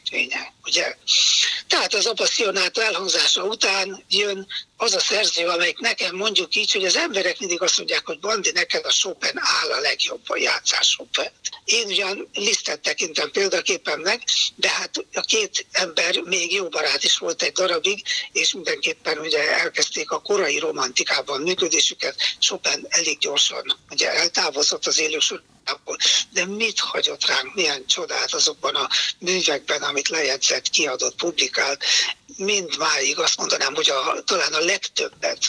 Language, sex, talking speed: Hungarian, male, 145 wpm